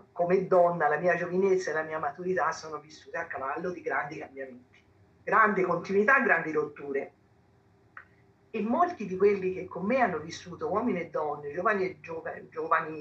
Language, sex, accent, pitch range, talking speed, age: Italian, female, native, 160-200 Hz, 165 wpm, 50-69